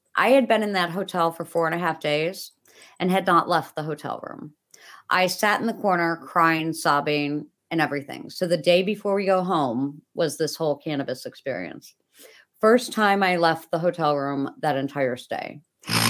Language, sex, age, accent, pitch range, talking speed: English, female, 50-69, American, 160-205 Hz, 185 wpm